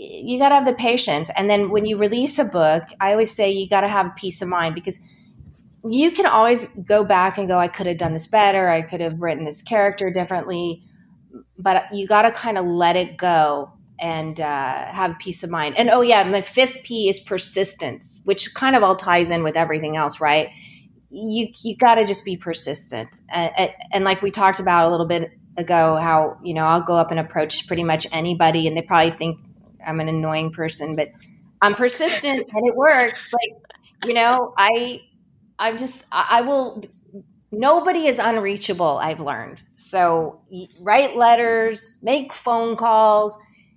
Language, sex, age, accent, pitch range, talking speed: English, female, 30-49, American, 165-220 Hz, 190 wpm